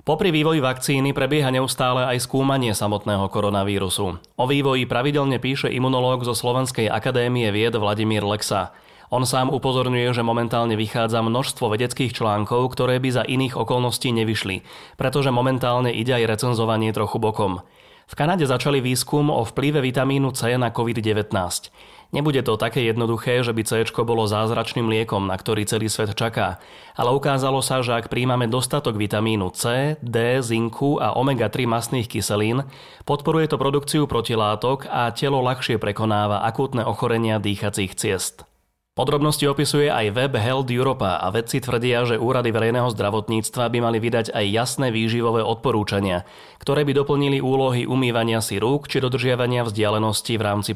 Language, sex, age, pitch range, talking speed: Slovak, male, 30-49, 110-130 Hz, 150 wpm